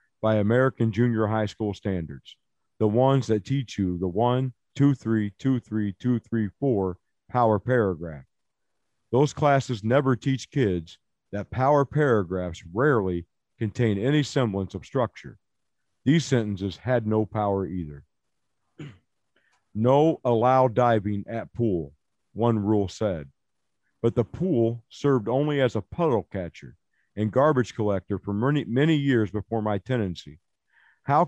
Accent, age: American, 50-69